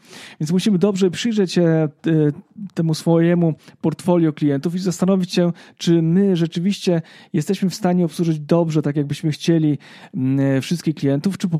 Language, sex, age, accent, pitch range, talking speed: Polish, male, 40-59, native, 145-180 Hz, 140 wpm